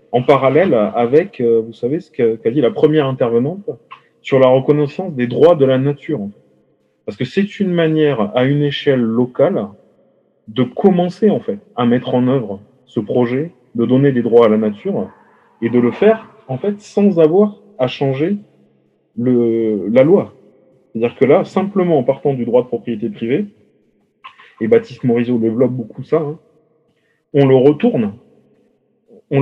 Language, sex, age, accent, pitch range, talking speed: French, male, 30-49, French, 125-180 Hz, 165 wpm